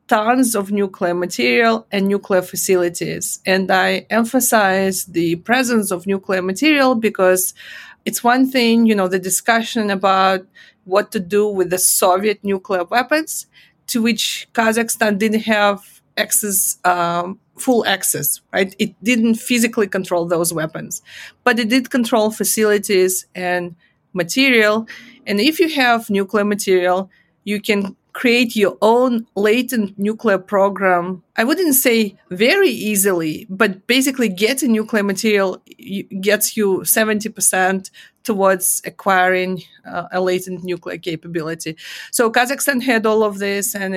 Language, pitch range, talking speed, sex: English, 185-230 Hz, 130 wpm, female